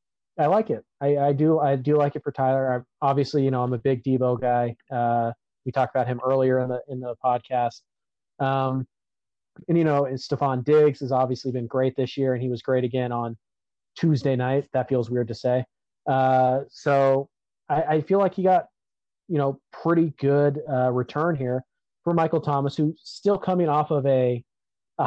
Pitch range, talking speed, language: 125-145 Hz, 195 wpm, English